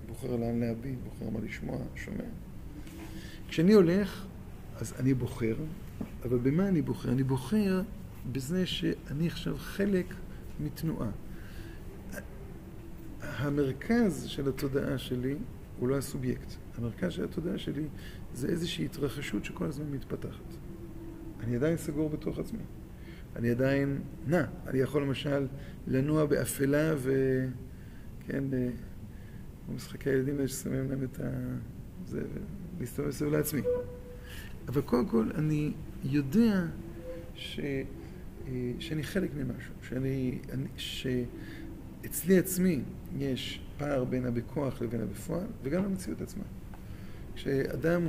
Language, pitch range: Hebrew, 115-150 Hz